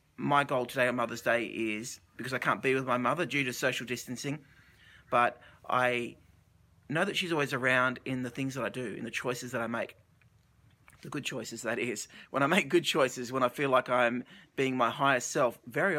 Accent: Australian